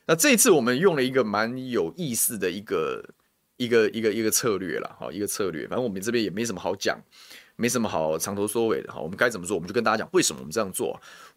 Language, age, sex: Chinese, 20-39, male